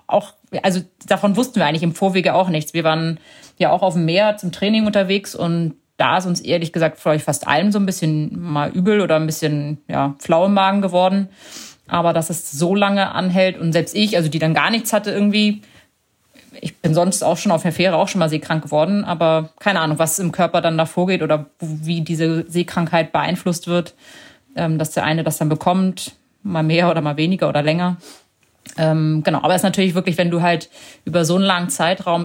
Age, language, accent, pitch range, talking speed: 30-49, German, German, 160-185 Hz, 210 wpm